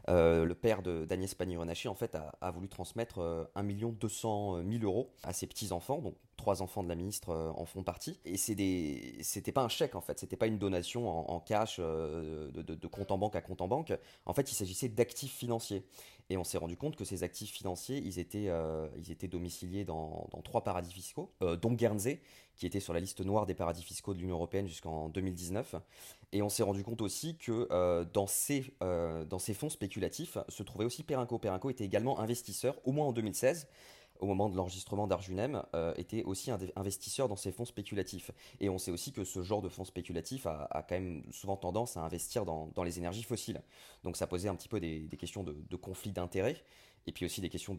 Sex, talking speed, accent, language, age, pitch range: male, 225 wpm, French, English, 20-39, 85-110 Hz